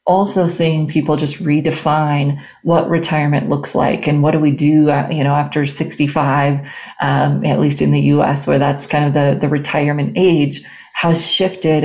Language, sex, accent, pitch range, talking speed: English, female, American, 140-155 Hz, 170 wpm